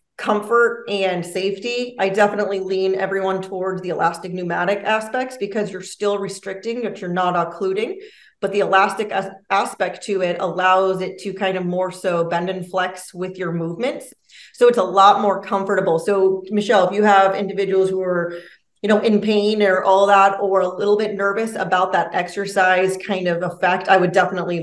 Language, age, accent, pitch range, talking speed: English, 30-49, American, 180-205 Hz, 185 wpm